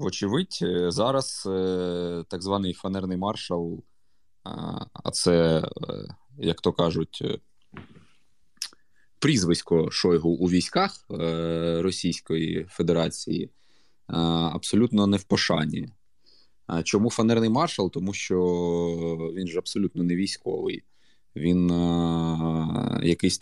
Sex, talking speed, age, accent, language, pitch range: male, 85 wpm, 20-39, native, Ukrainian, 85-100 Hz